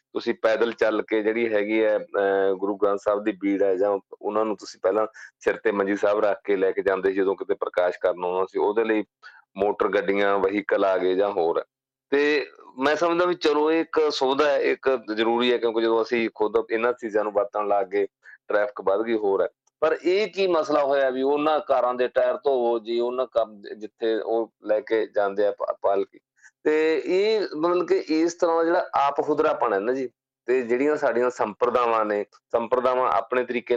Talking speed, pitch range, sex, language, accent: 135 wpm, 110-160 Hz, male, English, Indian